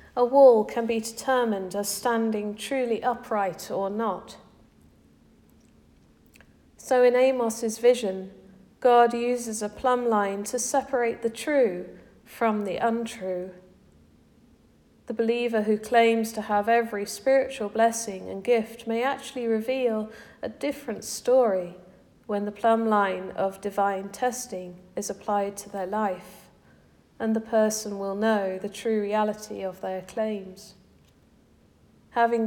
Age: 40-59